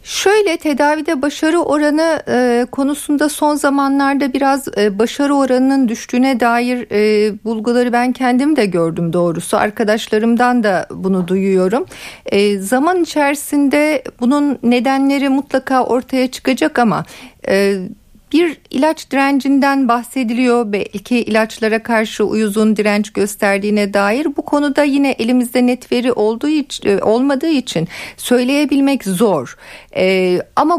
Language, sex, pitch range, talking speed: Turkish, female, 215-285 Hz, 115 wpm